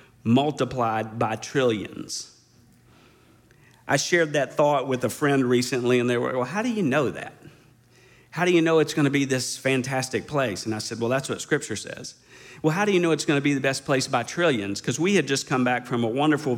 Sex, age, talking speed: male, 50-69, 215 wpm